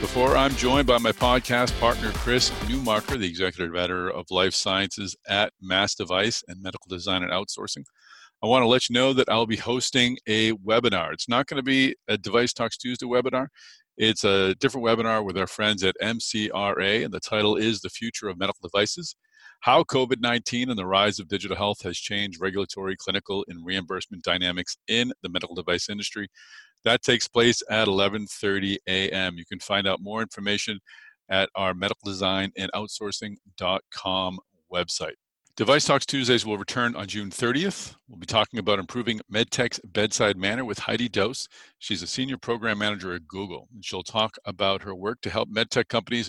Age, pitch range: 40-59, 95-120 Hz